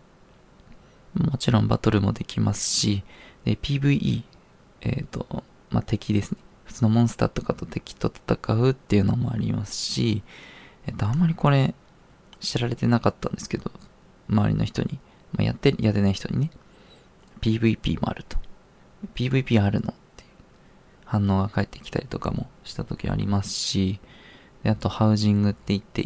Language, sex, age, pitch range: Japanese, male, 20-39, 100-125 Hz